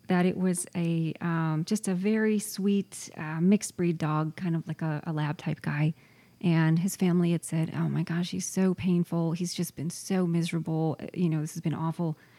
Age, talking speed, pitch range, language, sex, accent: 30-49, 210 wpm, 165-195 Hz, English, female, American